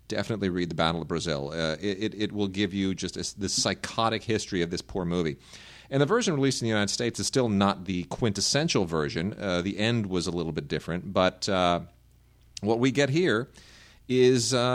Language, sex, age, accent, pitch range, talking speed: English, male, 40-59, American, 90-110 Hz, 205 wpm